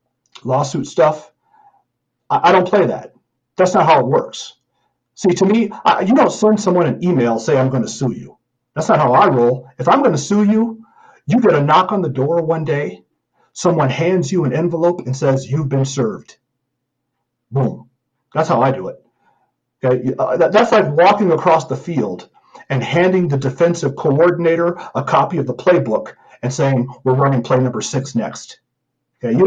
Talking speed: 180 wpm